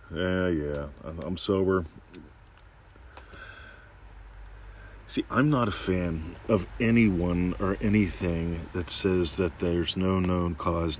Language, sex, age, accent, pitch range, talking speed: English, male, 40-59, American, 80-100 Hz, 110 wpm